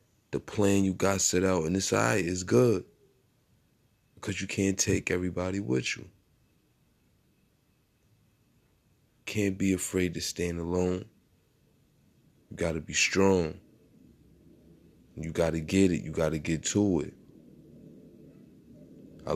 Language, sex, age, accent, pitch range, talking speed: English, male, 20-39, American, 85-100 Hz, 130 wpm